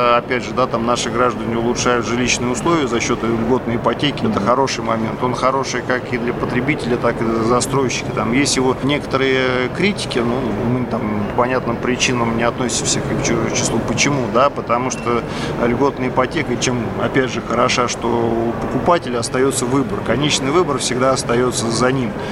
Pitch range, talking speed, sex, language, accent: 115-130 Hz, 165 wpm, male, Russian, native